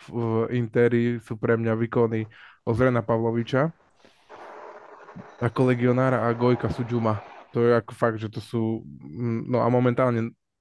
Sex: male